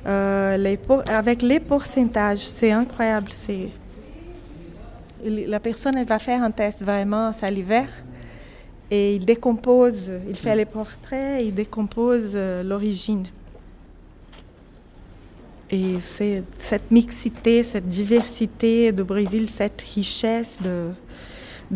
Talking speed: 115 wpm